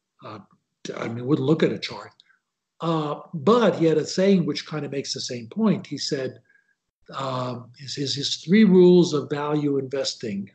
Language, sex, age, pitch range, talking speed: English, male, 60-79, 135-175 Hz, 180 wpm